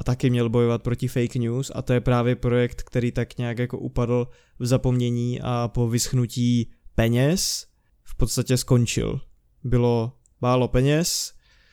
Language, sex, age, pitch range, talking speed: Czech, male, 20-39, 120-130 Hz, 150 wpm